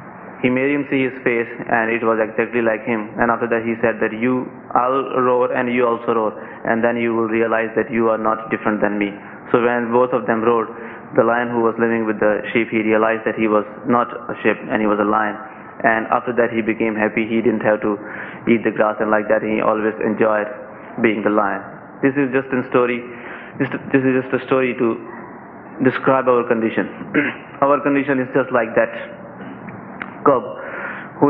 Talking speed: 205 wpm